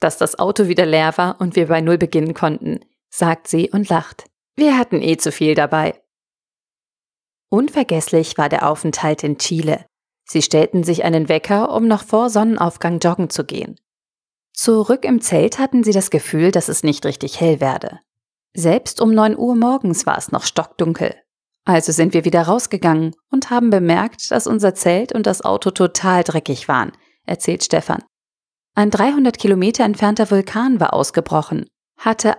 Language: German